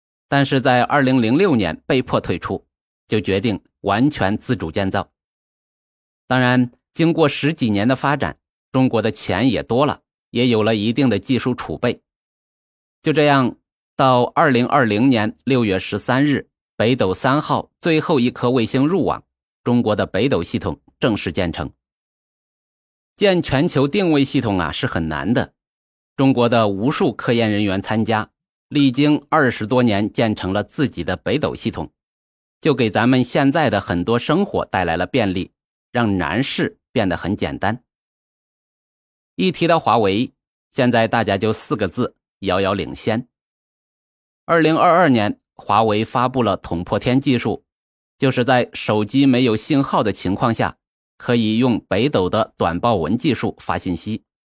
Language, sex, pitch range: Chinese, male, 100-135 Hz